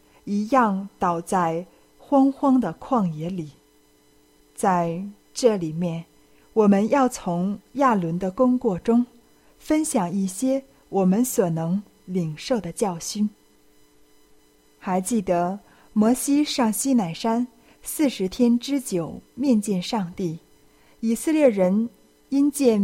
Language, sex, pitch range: Chinese, female, 175-245 Hz